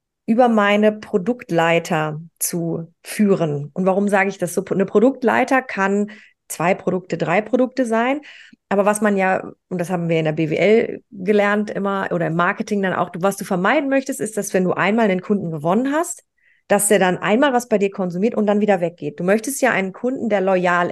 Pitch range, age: 185-240 Hz, 30-49